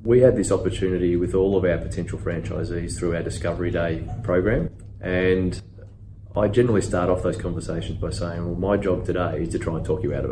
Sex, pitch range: male, 90-100 Hz